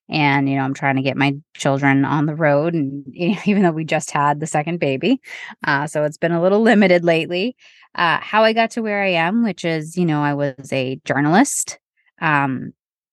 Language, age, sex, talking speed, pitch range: English, 20-39, female, 210 wpm, 135-175 Hz